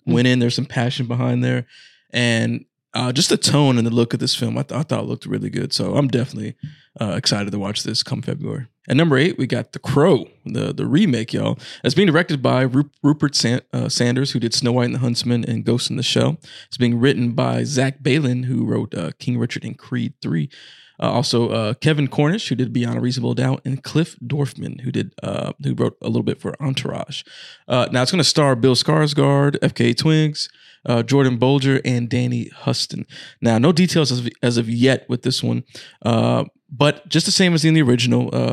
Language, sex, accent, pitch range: English, male, American, 120-145 Hz